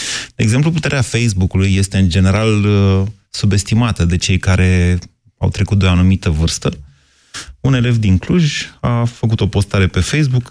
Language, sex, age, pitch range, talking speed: Romanian, male, 30-49, 90-115 Hz, 155 wpm